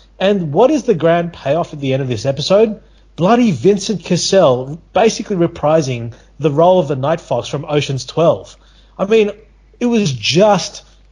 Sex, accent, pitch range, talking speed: male, Australian, 120-165 Hz, 165 wpm